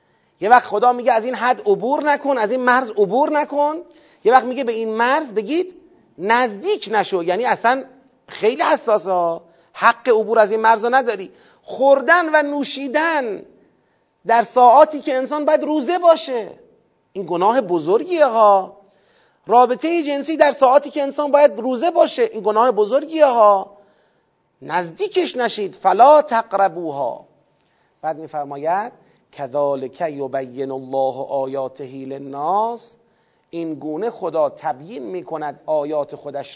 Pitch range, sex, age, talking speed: 180-275 Hz, male, 40-59, 130 wpm